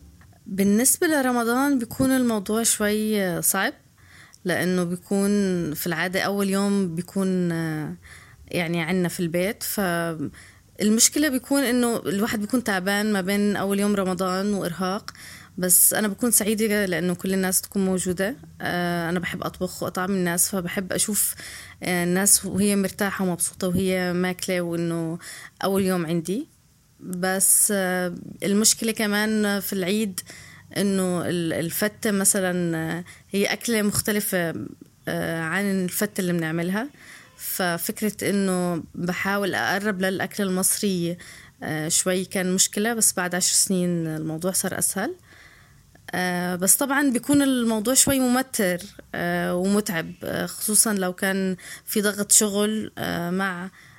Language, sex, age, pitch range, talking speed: Arabic, female, 20-39, 180-210 Hz, 110 wpm